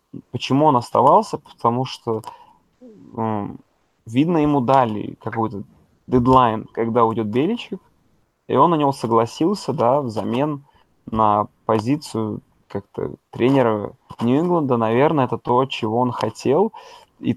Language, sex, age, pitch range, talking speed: Russian, male, 20-39, 115-150 Hz, 115 wpm